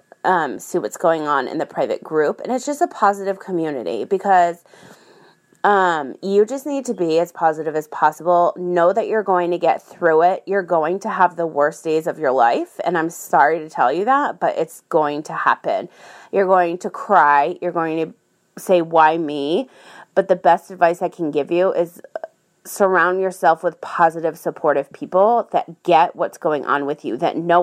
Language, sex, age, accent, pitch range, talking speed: English, female, 30-49, American, 165-195 Hz, 195 wpm